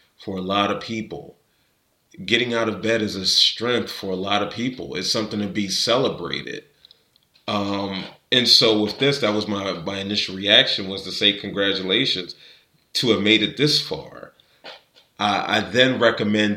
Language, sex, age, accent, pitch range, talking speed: English, male, 30-49, American, 100-115 Hz, 170 wpm